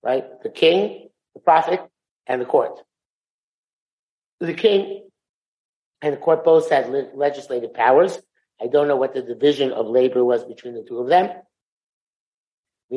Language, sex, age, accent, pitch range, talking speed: English, male, 50-69, American, 130-155 Hz, 150 wpm